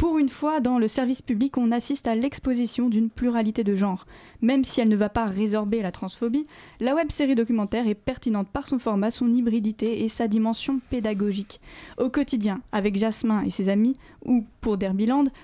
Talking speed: 185 wpm